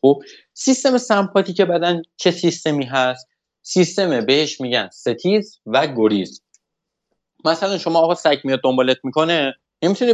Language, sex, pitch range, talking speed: Persian, male, 115-160 Hz, 120 wpm